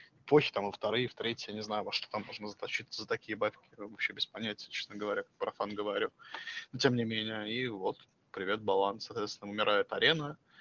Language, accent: Russian, native